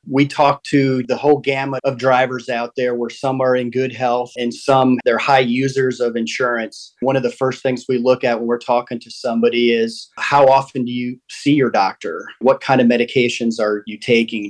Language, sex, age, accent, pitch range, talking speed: English, male, 40-59, American, 115-135 Hz, 210 wpm